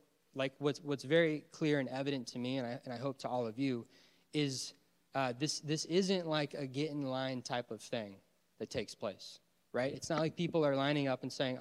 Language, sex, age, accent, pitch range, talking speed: English, male, 20-39, American, 120-145 Hz, 225 wpm